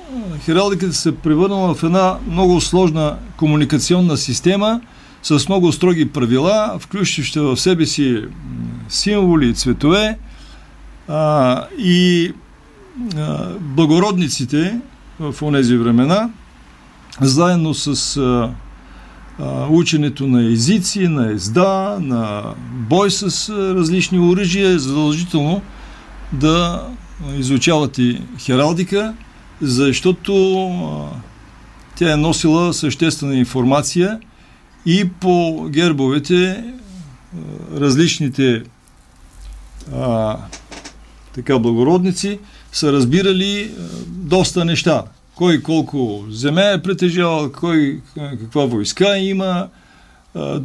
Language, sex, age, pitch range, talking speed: Bulgarian, male, 50-69, 130-185 Hz, 90 wpm